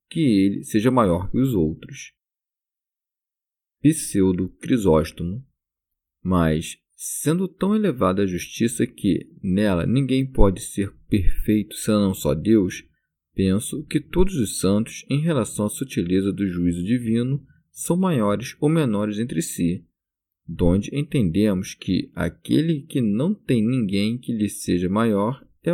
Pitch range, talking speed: 95-135 Hz, 125 wpm